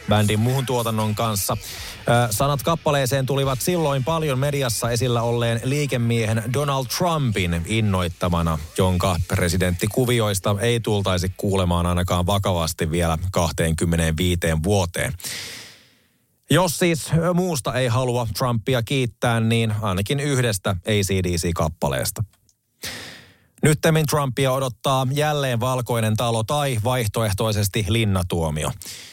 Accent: native